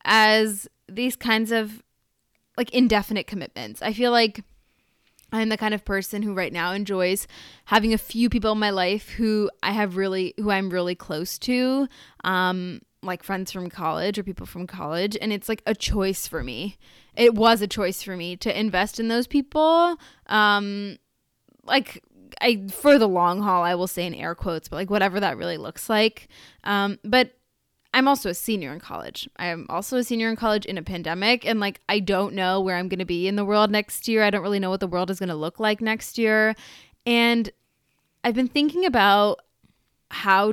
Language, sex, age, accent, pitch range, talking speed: English, female, 10-29, American, 190-225 Hz, 200 wpm